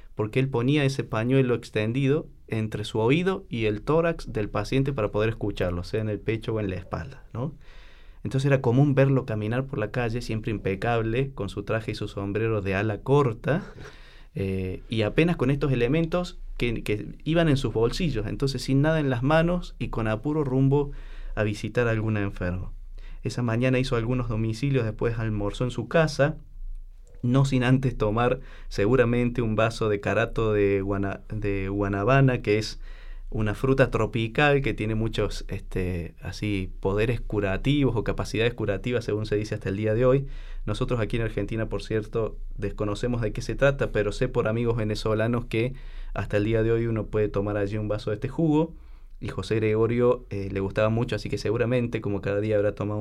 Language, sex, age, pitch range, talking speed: Spanish, male, 20-39, 105-130 Hz, 185 wpm